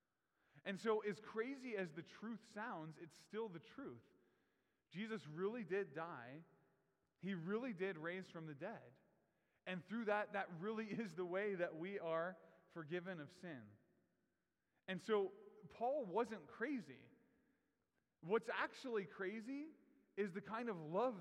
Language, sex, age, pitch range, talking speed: English, male, 20-39, 165-210 Hz, 140 wpm